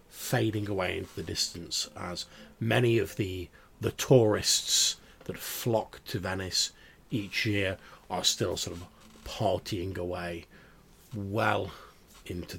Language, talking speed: English, 120 wpm